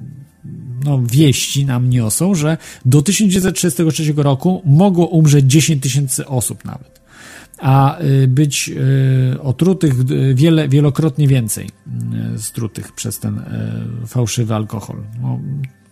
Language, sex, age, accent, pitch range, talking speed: Polish, male, 40-59, native, 115-150 Hz, 110 wpm